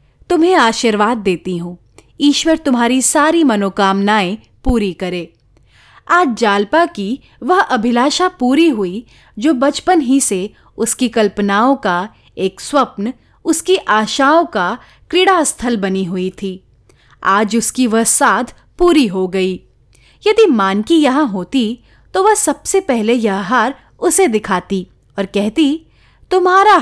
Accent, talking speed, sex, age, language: native, 130 wpm, female, 30-49, Hindi